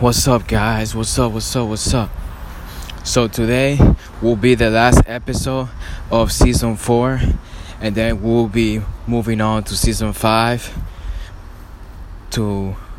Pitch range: 85-115 Hz